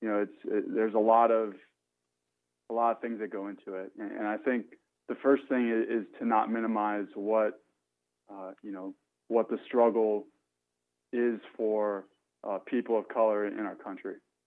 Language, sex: English, male